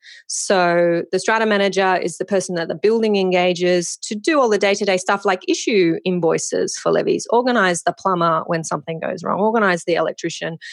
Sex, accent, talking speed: female, Australian, 180 wpm